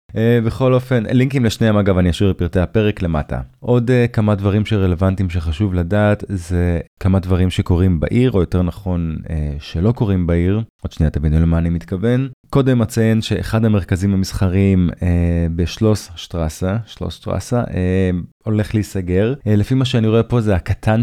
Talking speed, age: 145 wpm, 20-39